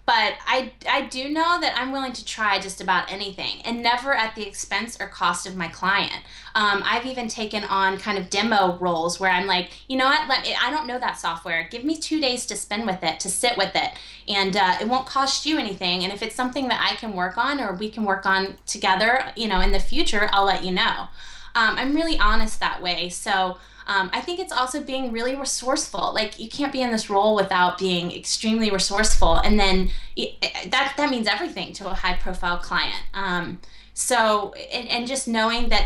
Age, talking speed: 20-39, 220 wpm